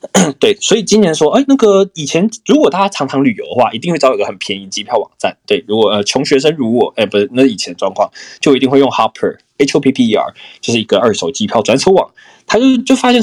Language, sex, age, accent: Chinese, male, 20-39, native